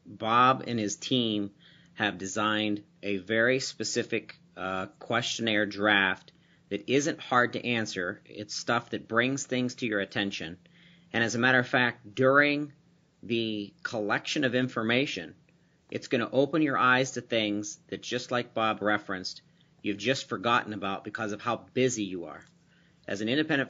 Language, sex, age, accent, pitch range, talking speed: English, male, 40-59, American, 105-125 Hz, 155 wpm